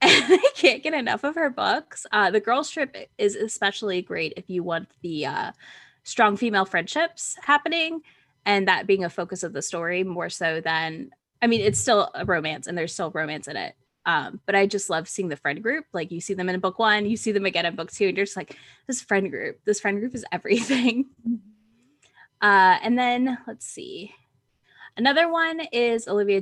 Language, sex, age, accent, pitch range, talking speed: English, female, 10-29, American, 180-245 Hz, 205 wpm